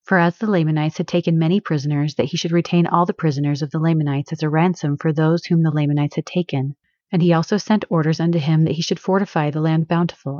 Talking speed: 240 wpm